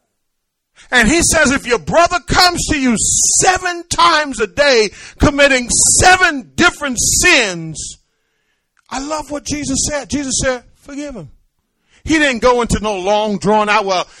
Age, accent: 40-59, American